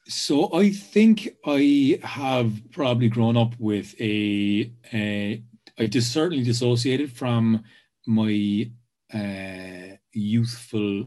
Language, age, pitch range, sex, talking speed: English, 30-49, 105-120 Hz, male, 100 wpm